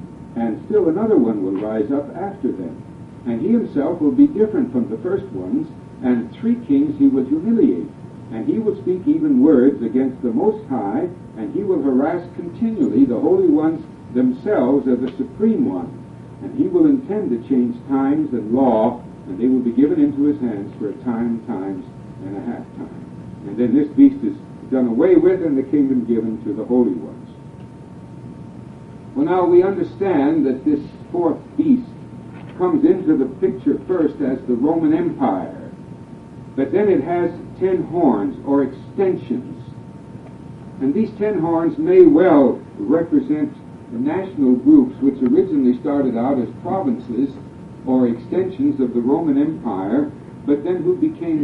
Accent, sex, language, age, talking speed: American, male, English, 60-79, 160 wpm